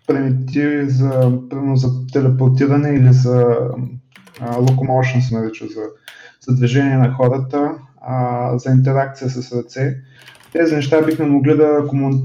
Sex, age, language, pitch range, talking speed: male, 20-39, Bulgarian, 125-140 Hz, 115 wpm